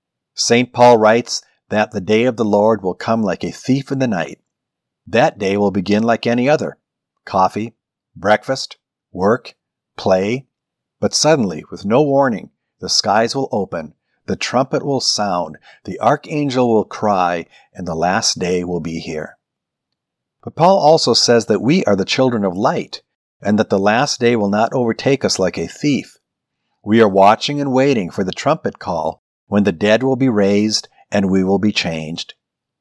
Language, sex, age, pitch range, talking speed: English, male, 50-69, 100-125 Hz, 175 wpm